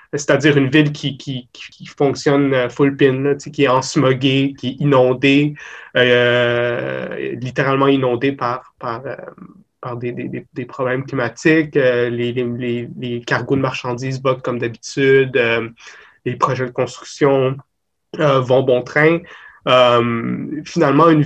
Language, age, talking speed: French, 20-39, 145 wpm